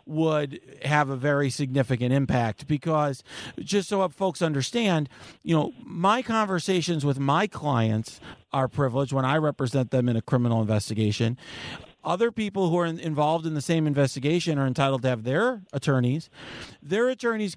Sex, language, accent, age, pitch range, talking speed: male, English, American, 40-59, 145-195 Hz, 155 wpm